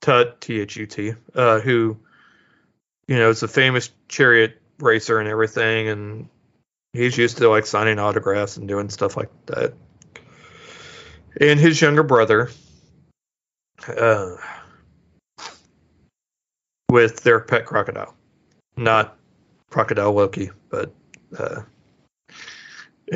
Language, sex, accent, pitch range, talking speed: English, male, American, 105-125 Hz, 100 wpm